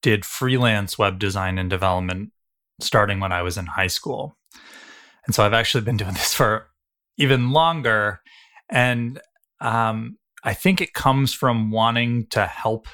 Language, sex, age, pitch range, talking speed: English, male, 20-39, 105-130 Hz, 155 wpm